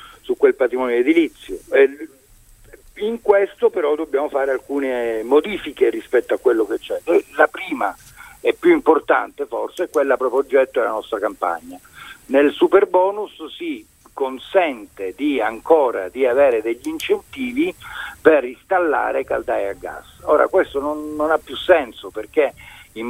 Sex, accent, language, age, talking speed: male, native, Italian, 50-69, 145 wpm